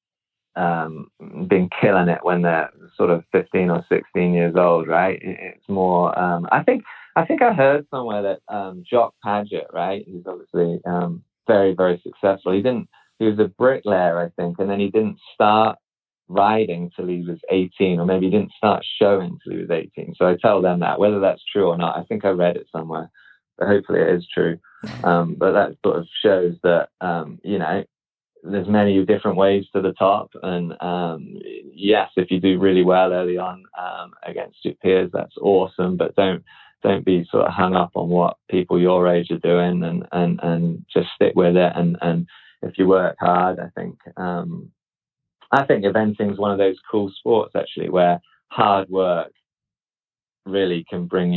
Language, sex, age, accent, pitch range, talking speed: English, male, 20-39, British, 85-100 Hz, 190 wpm